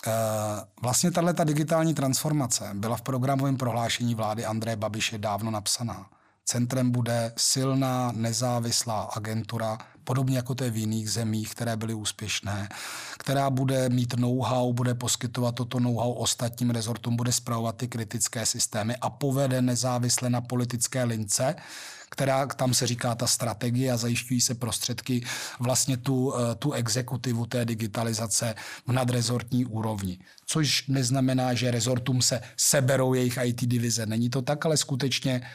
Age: 30-49